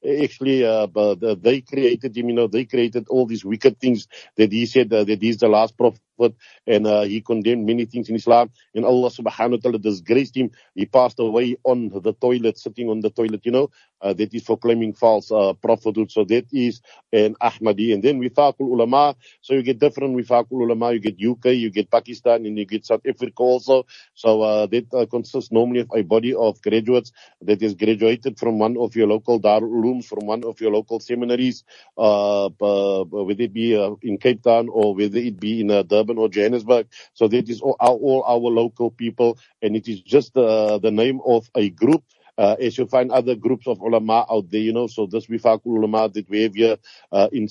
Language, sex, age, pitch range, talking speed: English, male, 50-69, 110-125 Hz, 210 wpm